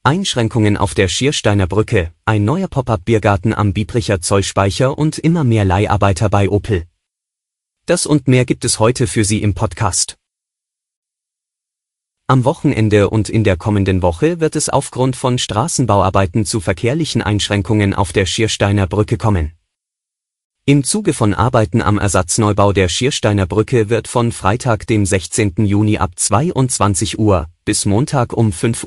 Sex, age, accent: male, 30-49, German